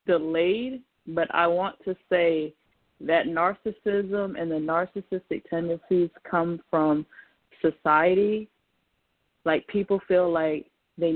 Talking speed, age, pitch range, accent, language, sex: 110 wpm, 20-39, 155-180 Hz, American, English, female